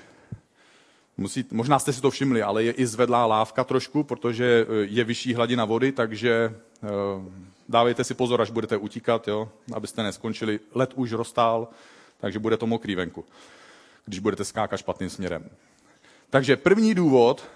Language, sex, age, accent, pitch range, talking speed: Czech, male, 40-59, native, 115-135 Hz, 150 wpm